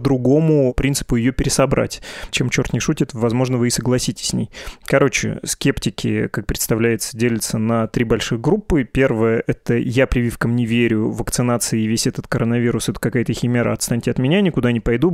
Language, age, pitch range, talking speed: Russian, 20-39, 120-145 Hz, 170 wpm